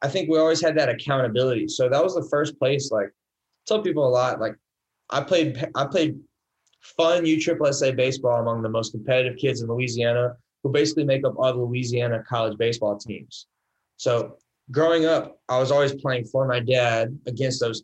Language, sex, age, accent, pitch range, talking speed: English, male, 20-39, American, 115-135 Hz, 190 wpm